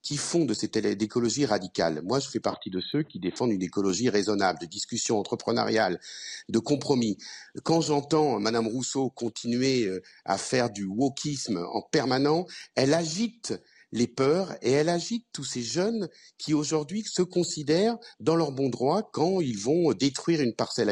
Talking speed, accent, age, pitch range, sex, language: 165 wpm, French, 50-69, 110-155 Hz, male, French